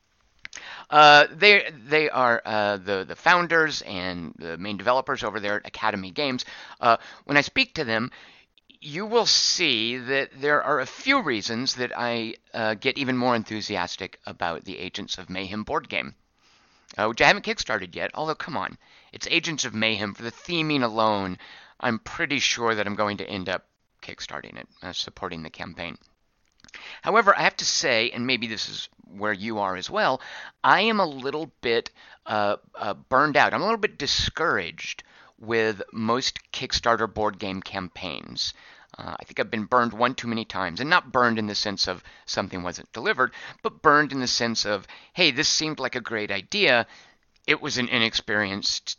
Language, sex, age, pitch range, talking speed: English, male, 50-69, 105-145 Hz, 185 wpm